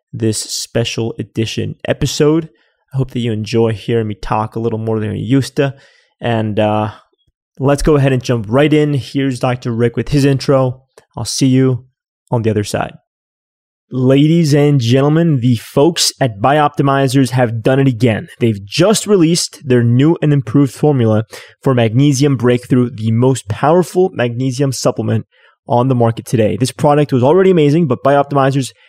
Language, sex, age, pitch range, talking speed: English, male, 20-39, 120-145 Hz, 165 wpm